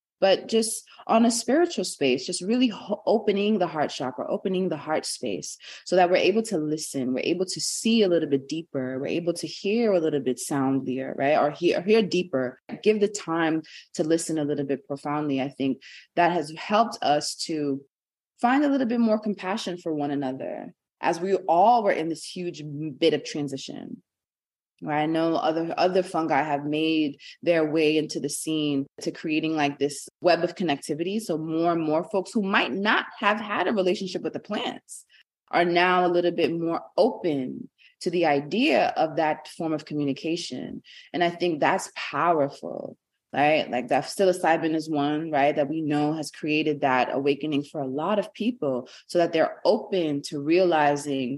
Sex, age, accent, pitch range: female, 20-39, American, 150-185 Hz